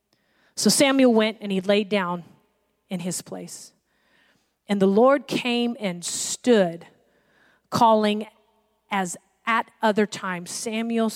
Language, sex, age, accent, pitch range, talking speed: English, female, 40-59, American, 195-250 Hz, 120 wpm